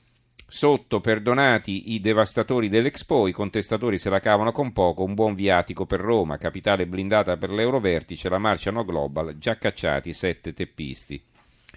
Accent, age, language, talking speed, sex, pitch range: native, 40-59, Italian, 150 wpm, male, 90-110 Hz